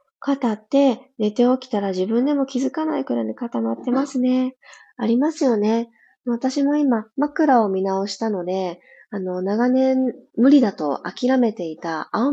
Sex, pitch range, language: female, 185-285 Hz, Japanese